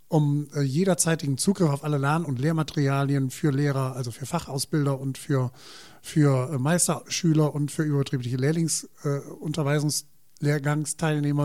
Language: German